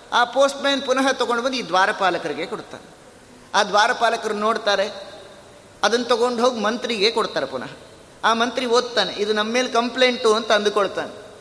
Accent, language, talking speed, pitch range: native, Kannada, 135 wpm, 185-230 Hz